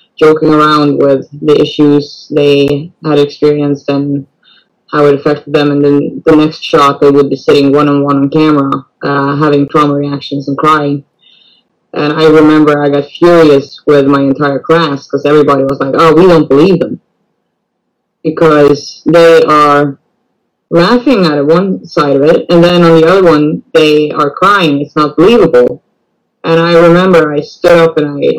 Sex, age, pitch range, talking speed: female, 20-39, 145-170 Hz, 170 wpm